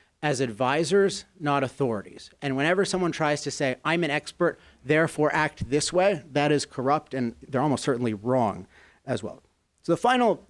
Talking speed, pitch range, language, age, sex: 170 wpm, 125-165 Hz, English, 30-49, male